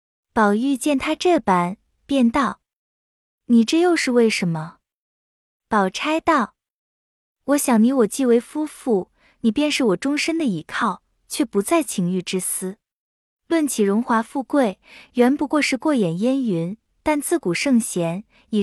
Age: 20-39